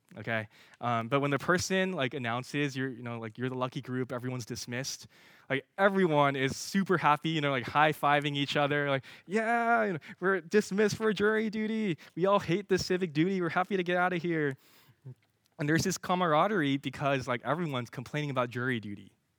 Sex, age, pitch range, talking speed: male, 20-39, 120-155 Hz, 195 wpm